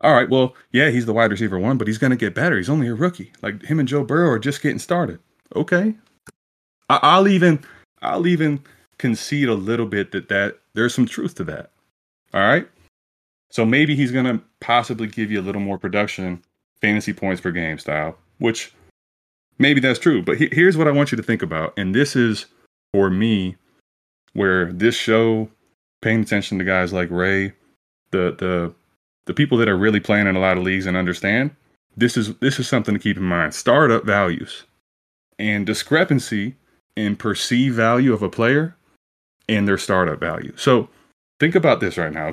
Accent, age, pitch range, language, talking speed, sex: American, 20-39, 95-130 Hz, English, 185 wpm, male